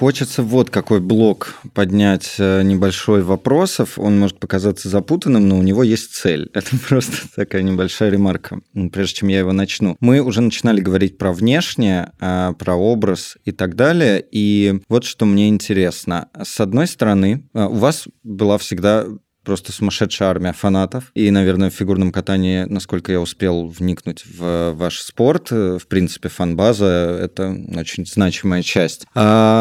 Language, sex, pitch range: Russian, male, 95-115 Hz